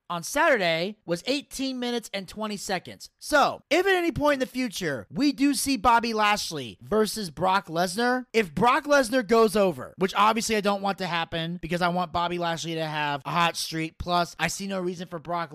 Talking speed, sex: 205 wpm, male